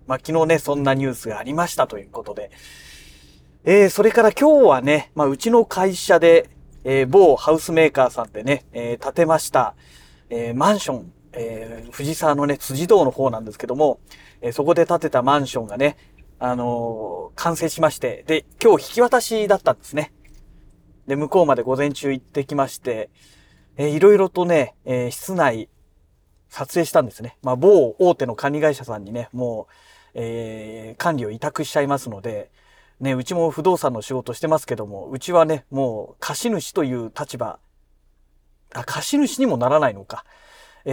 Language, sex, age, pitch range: Japanese, male, 40-59, 120-165 Hz